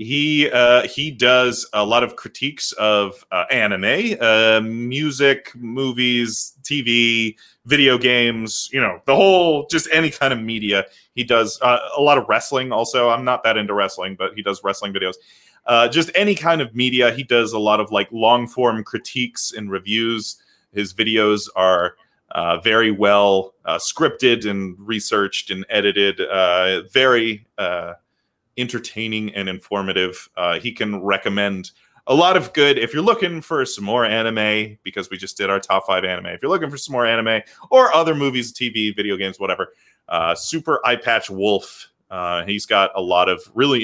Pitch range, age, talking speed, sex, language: 100-130 Hz, 30-49, 170 wpm, male, English